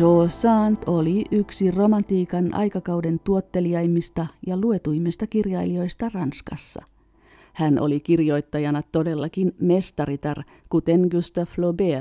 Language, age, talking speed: Finnish, 50-69, 90 wpm